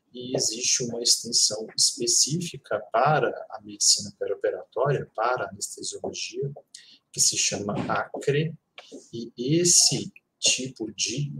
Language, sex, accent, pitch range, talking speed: Portuguese, male, Brazilian, 110-165 Hz, 100 wpm